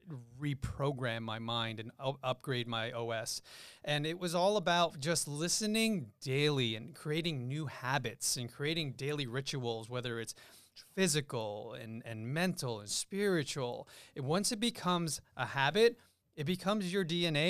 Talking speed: 145 wpm